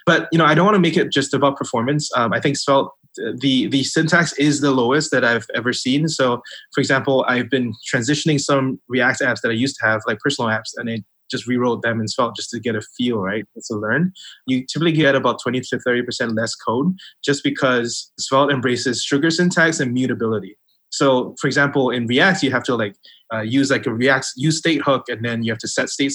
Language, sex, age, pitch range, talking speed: English, male, 20-39, 115-140 Hz, 225 wpm